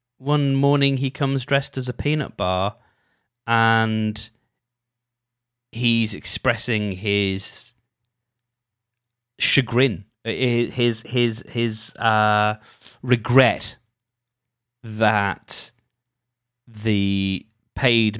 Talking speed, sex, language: 70 wpm, male, English